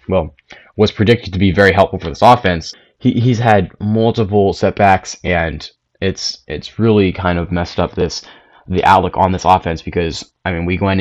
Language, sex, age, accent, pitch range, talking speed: English, male, 20-39, American, 90-105 Hz, 185 wpm